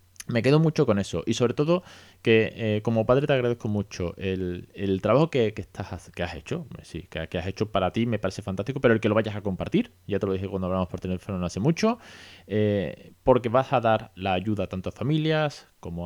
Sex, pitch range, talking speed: male, 95-120 Hz, 235 wpm